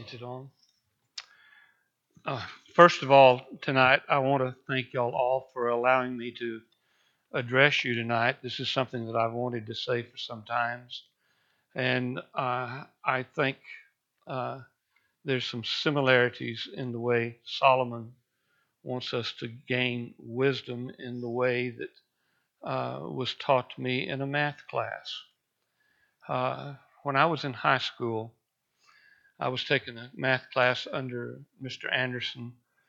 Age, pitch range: 60-79, 120-145 Hz